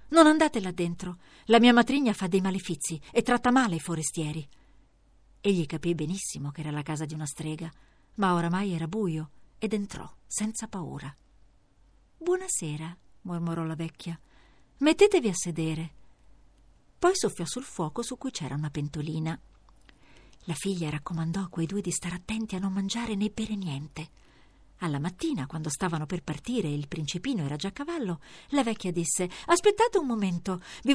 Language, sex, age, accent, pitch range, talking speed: Italian, female, 50-69, native, 160-230 Hz, 165 wpm